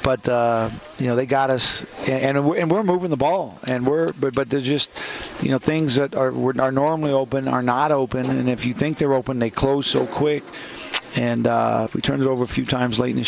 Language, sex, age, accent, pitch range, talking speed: English, male, 40-59, American, 120-140 Hz, 245 wpm